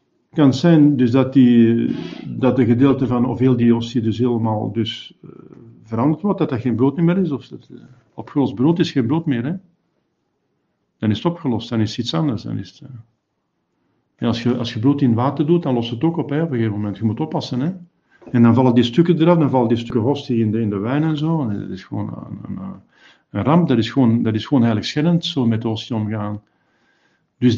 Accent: Dutch